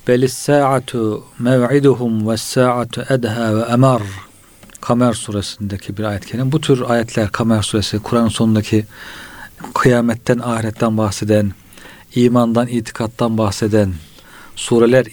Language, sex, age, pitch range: Turkish, male, 40-59, 105-125 Hz